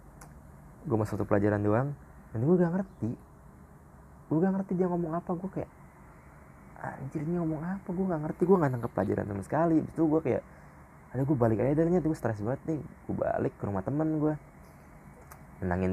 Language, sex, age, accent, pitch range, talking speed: Indonesian, male, 20-39, native, 95-130 Hz, 185 wpm